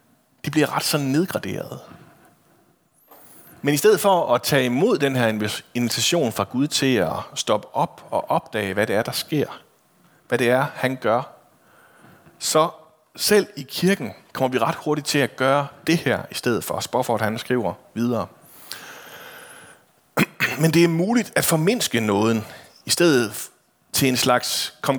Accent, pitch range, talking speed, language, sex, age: native, 115-155 Hz, 165 wpm, Danish, male, 30-49